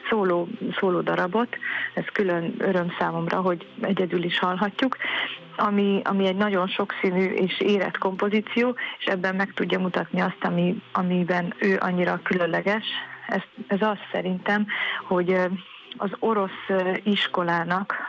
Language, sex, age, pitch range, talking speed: Hungarian, female, 30-49, 180-205 Hz, 125 wpm